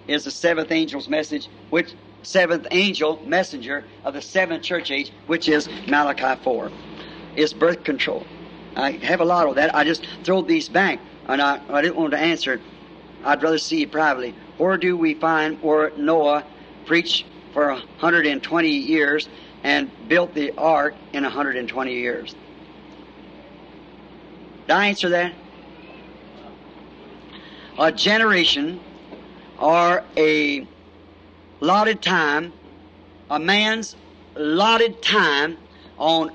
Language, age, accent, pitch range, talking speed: English, 50-69, American, 150-190 Hz, 130 wpm